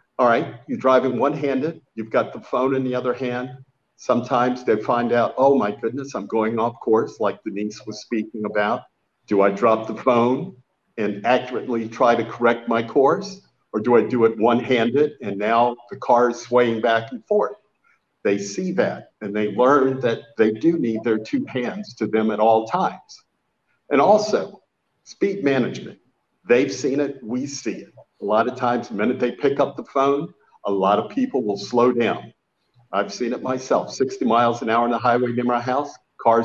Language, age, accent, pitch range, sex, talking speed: English, 50-69, American, 110-130 Hz, male, 195 wpm